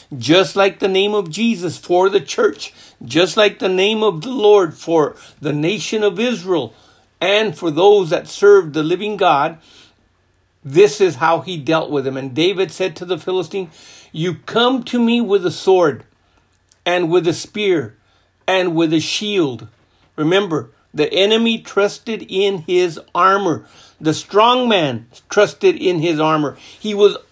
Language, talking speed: English, 160 wpm